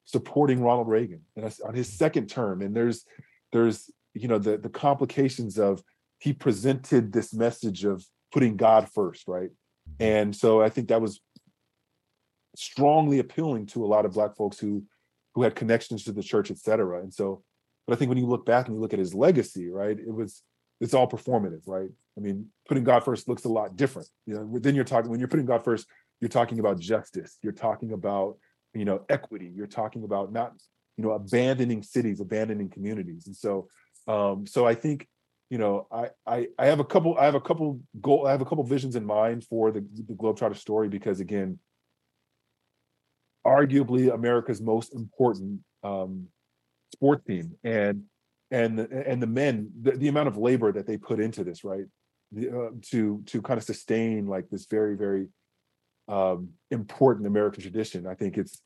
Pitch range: 100-125 Hz